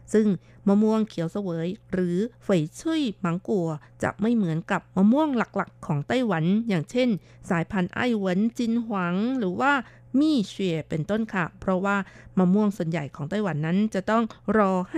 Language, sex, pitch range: Thai, female, 175-225 Hz